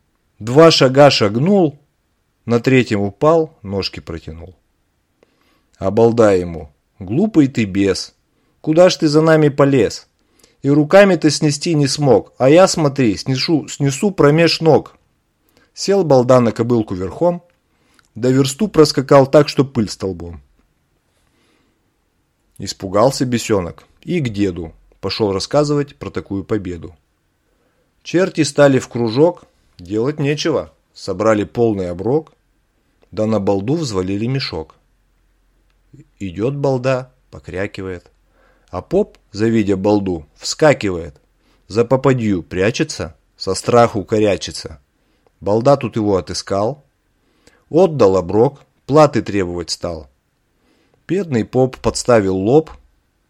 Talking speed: 105 wpm